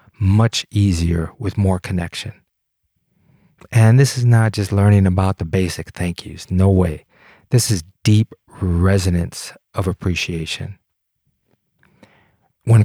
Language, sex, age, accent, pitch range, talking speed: English, male, 30-49, American, 95-110 Hz, 115 wpm